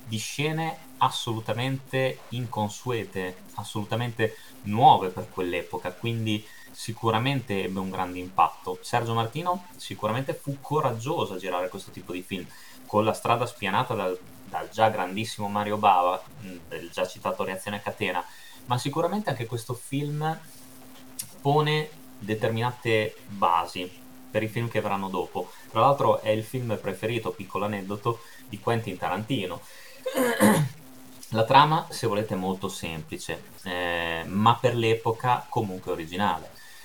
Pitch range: 100-135 Hz